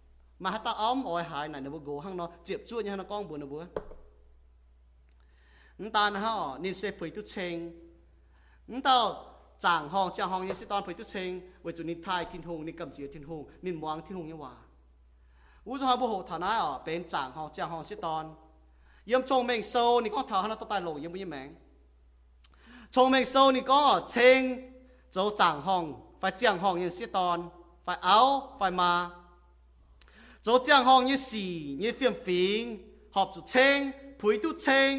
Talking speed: 55 wpm